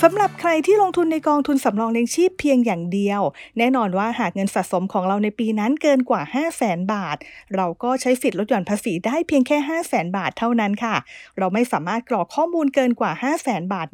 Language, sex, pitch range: English, female, 205-290 Hz